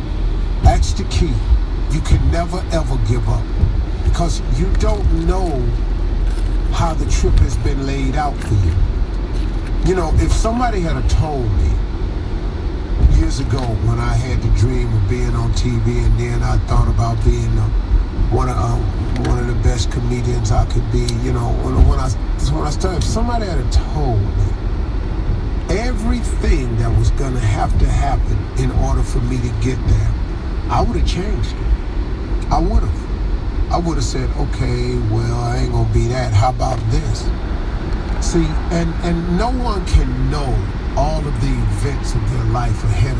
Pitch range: 85-115 Hz